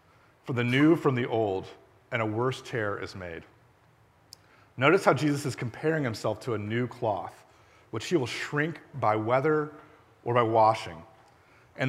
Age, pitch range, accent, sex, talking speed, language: 40-59, 110-145 Hz, American, male, 155 wpm, English